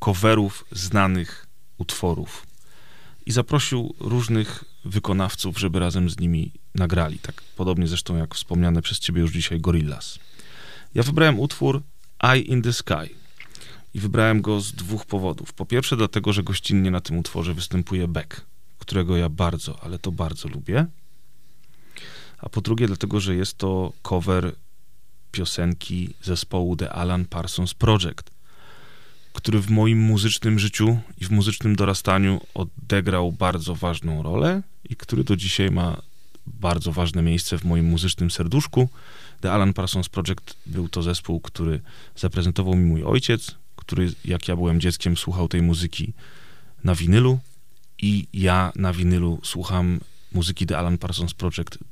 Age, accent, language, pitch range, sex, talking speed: 30-49, native, Polish, 85-110 Hz, male, 140 wpm